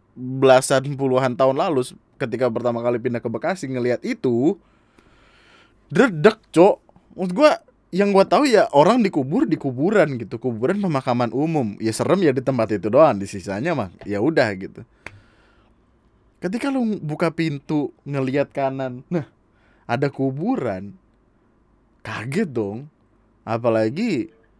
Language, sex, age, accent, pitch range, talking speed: Indonesian, male, 20-39, native, 105-140 Hz, 130 wpm